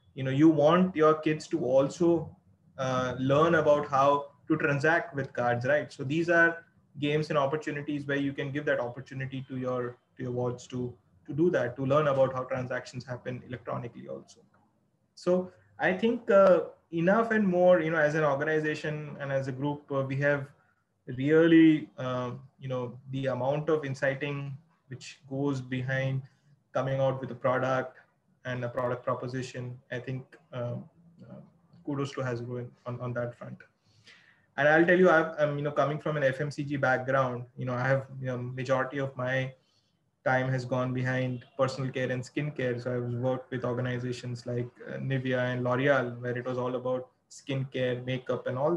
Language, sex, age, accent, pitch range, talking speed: English, male, 20-39, Indian, 125-155 Hz, 180 wpm